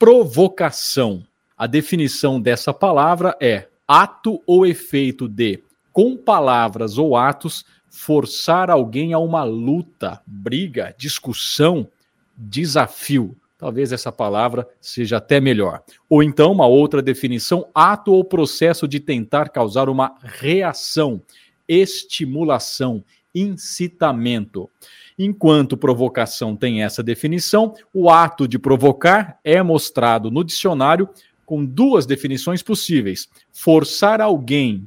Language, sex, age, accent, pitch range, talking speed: Portuguese, male, 40-59, Brazilian, 125-180 Hz, 105 wpm